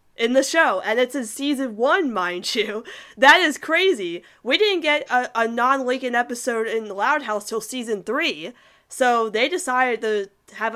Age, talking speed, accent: 20-39, 185 wpm, American